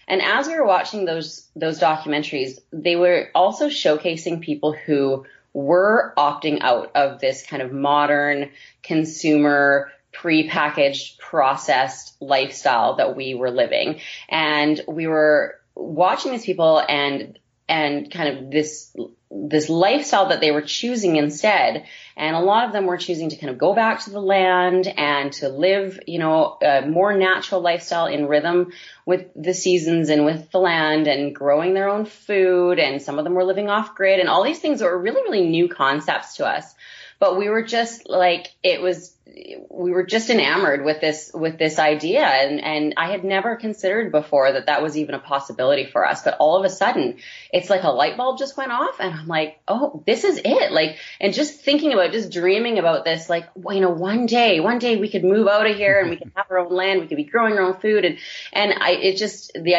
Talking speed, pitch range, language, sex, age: 200 wpm, 150-195 Hz, English, female, 30-49